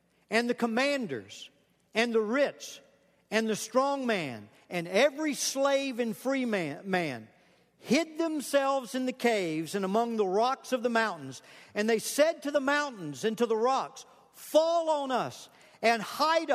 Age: 50-69